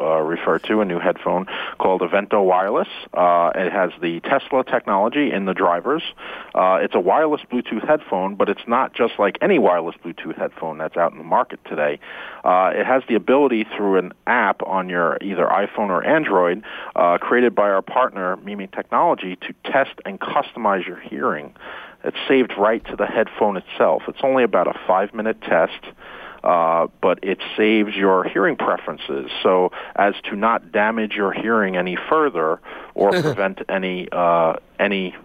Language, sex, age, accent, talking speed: English, male, 40-59, American, 165 wpm